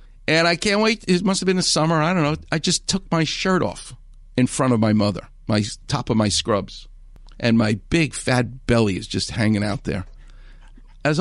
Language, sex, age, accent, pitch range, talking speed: English, male, 50-69, American, 130-215 Hz, 215 wpm